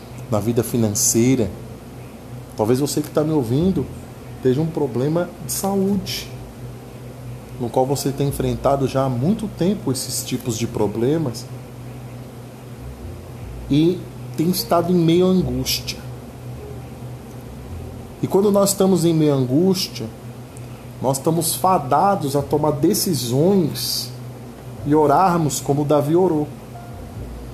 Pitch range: 125-175 Hz